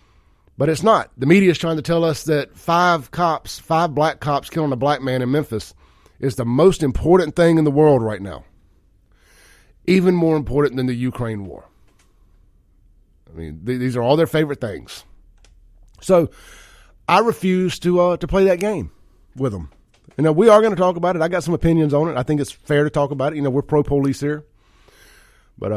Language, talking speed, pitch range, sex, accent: English, 205 wpm, 105-155 Hz, male, American